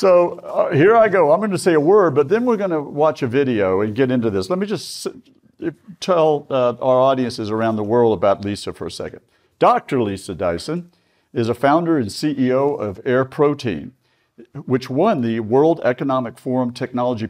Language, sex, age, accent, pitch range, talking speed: English, male, 50-69, American, 110-145 Hz, 195 wpm